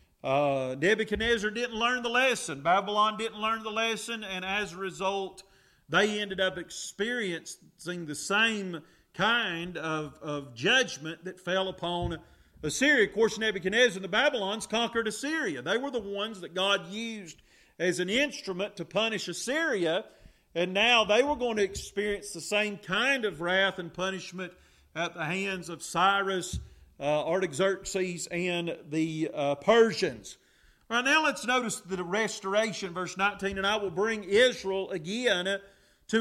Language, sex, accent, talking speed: English, male, American, 145 wpm